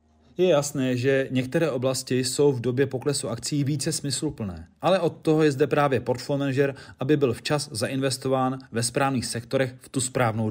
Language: Czech